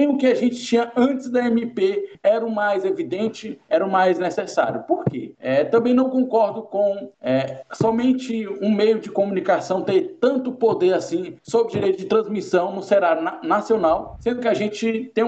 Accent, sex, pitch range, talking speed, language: Brazilian, male, 195-250 Hz, 170 wpm, Portuguese